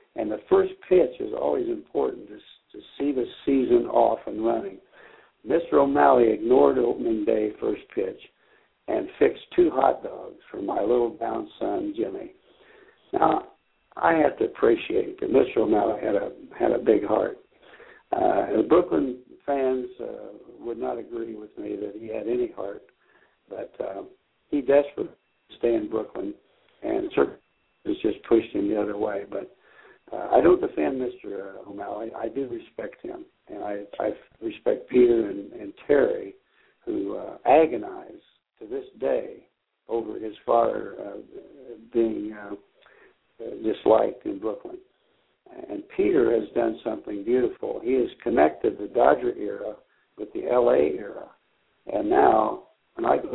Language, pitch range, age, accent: English, 320-425 Hz, 60-79, American